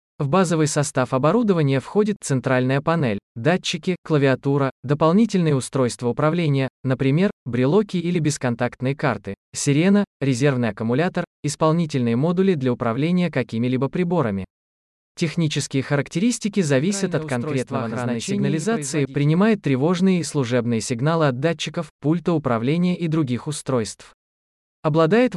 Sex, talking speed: male, 110 wpm